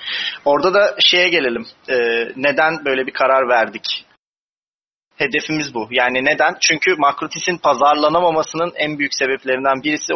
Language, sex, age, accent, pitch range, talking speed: Turkish, male, 30-49, native, 125-155 Hz, 120 wpm